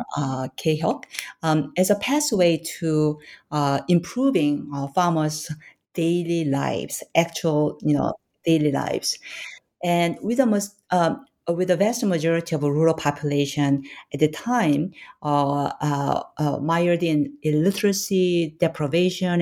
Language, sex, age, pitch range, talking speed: English, female, 50-69, 145-185 Hz, 125 wpm